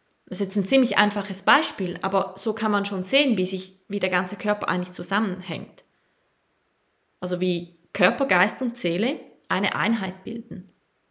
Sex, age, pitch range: female, 20-39, 185-235 Hz